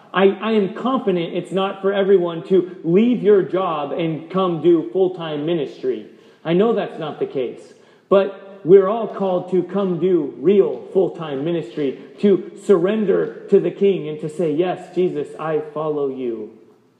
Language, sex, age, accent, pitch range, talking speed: English, male, 30-49, American, 145-195 Hz, 170 wpm